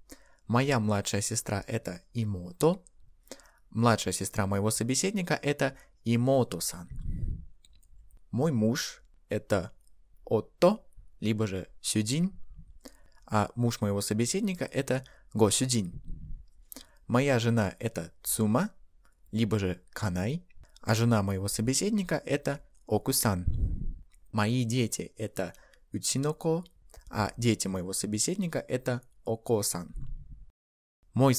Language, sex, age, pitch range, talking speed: Russian, male, 20-39, 100-130 Hz, 90 wpm